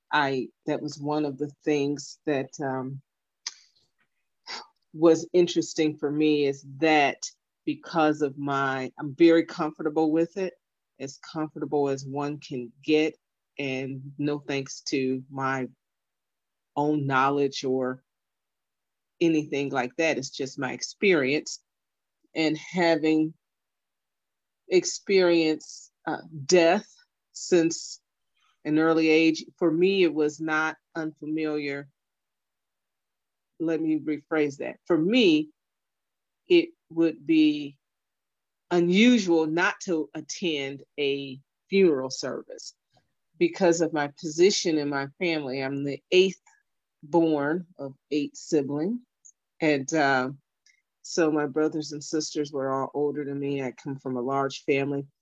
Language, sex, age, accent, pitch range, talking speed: English, female, 30-49, American, 140-165 Hz, 115 wpm